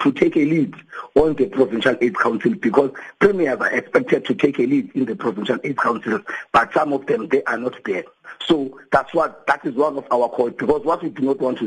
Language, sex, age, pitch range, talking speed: English, male, 50-69, 130-175 Hz, 235 wpm